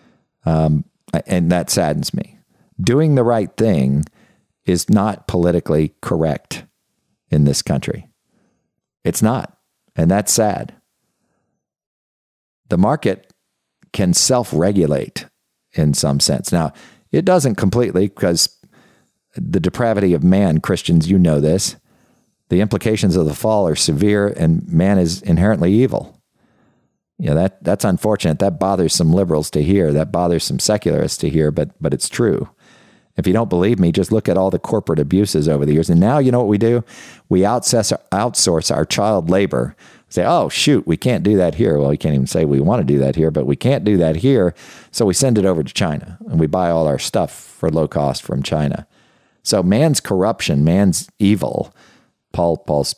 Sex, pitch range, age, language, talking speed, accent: male, 75-100 Hz, 50-69, English, 170 wpm, American